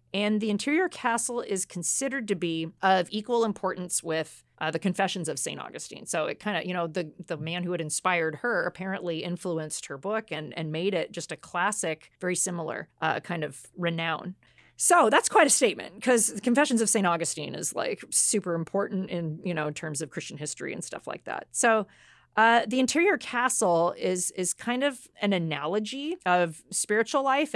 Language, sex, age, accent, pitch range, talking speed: English, female, 40-59, American, 165-215 Hz, 195 wpm